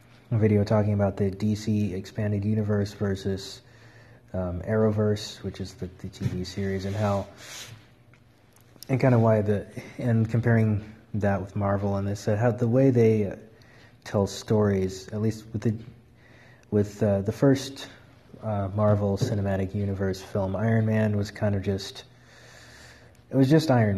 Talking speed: 155 wpm